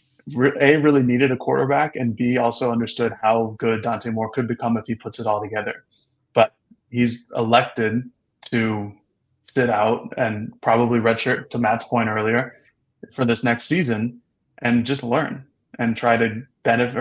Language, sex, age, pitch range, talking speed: English, male, 20-39, 110-125 Hz, 160 wpm